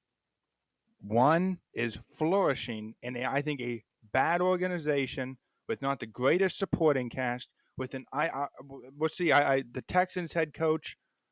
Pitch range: 130-170 Hz